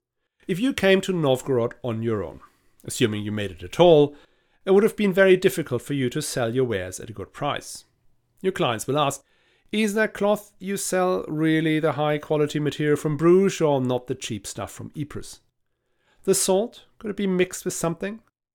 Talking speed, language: 195 wpm, English